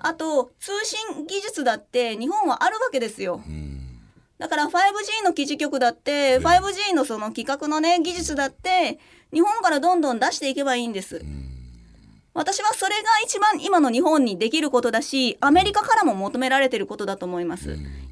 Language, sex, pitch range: Japanese, female, 235-360 Hz